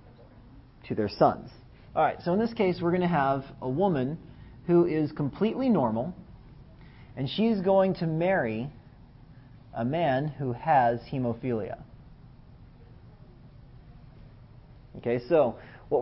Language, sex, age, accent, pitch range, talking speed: English, male, 40-59, American, 120-150 Hz, 120 wpm